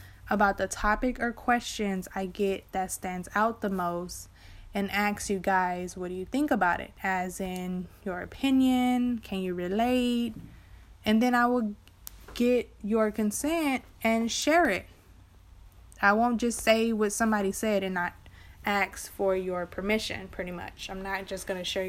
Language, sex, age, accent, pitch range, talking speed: English, female, 20-39, American, 185-245 Hz, 165 wpm